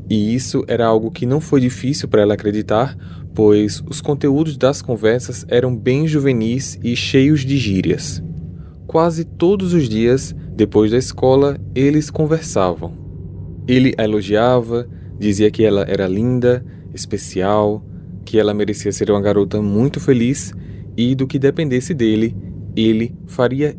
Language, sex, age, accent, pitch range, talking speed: Portuguese, male, 20-39, Brazilian, 105-135 Hz, 140 wpm